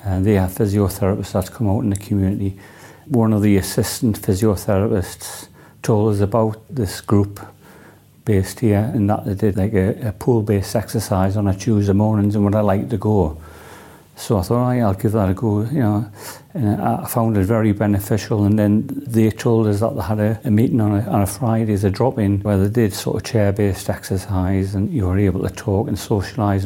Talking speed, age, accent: 210 wpm, 40-59, British